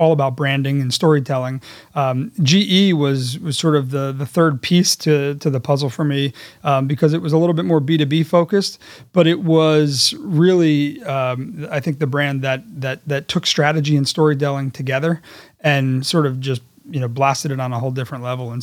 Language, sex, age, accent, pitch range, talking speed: English, male, 30-49, American, 130-155 Hz, 200 wpm